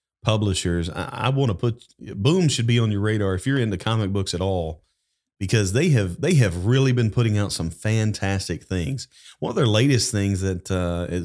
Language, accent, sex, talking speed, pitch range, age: English, American, male, 205 wpm, 95-120 Hz, 40-59